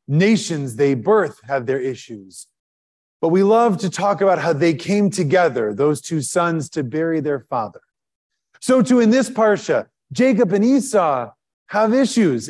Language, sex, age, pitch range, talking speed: English, male, 30-49, 165-230 Hz, 160 wpm